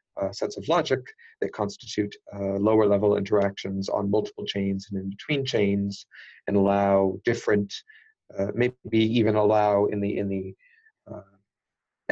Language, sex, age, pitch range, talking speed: English, male, 30-49, 100-105 Hz, 140 wpm